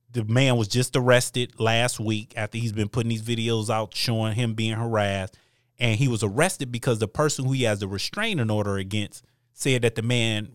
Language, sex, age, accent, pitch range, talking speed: English, male, 30-49, American, 105-125 Hz, 205 wpm